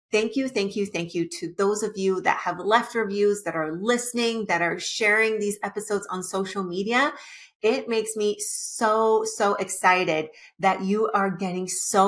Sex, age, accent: female, 30-49, American